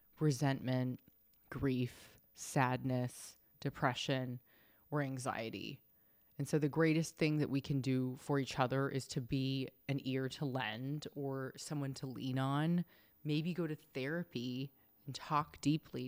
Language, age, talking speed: English, 20-39, 140 wpm